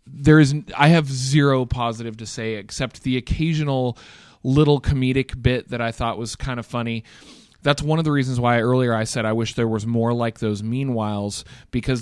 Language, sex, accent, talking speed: English, male, American, 195 wpm